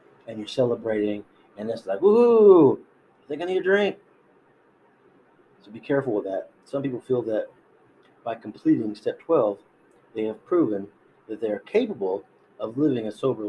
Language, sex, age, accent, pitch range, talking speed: English, male, 30-49, American, 110-150 Hz, 160 wpm